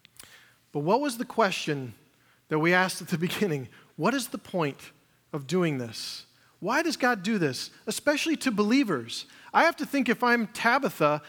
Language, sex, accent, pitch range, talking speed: English, male, American, 150-210 Hz, 175 wpm